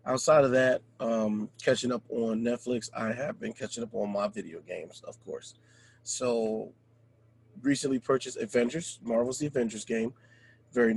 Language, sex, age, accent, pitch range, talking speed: English, male, 30-49, American, 115-130 Hz, 155 wpm